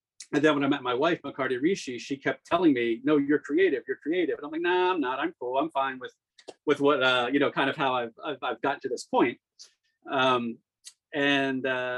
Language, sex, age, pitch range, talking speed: English, male, 40-59, 125-155 Hz, 230 wpm